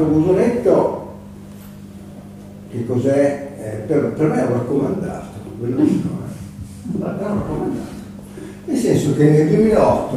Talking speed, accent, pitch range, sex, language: 110 wpm, native, 110-150 Hz, male, Italian